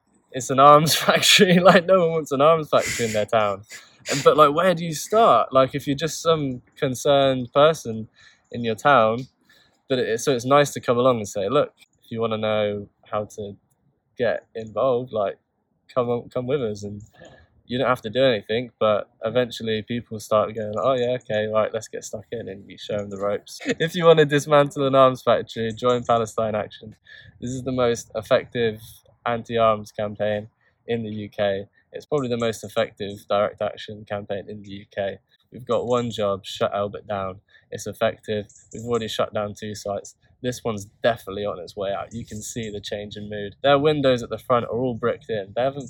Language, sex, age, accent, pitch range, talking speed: English, male, 20-39, British, 105-130 Hz, 200 wpm